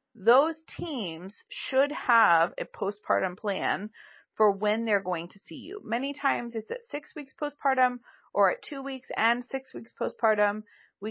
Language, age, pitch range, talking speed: English, 30-49, 190-265 Hz, 160 wpm